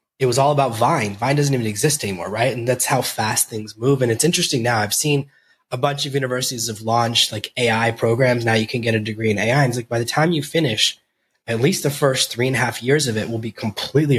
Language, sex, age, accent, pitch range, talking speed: English, male, 20-39, American, 115-145 Hz, 260 wpm